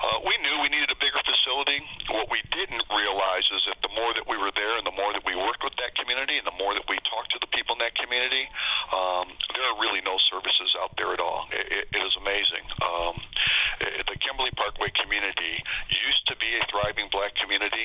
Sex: male